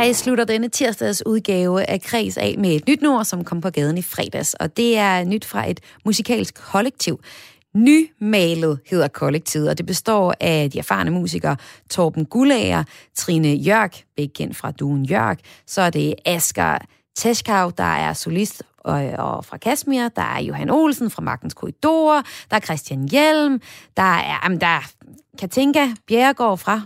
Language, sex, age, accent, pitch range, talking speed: Danish, female, 30-49, native, 170-235 Hz, 160 wpm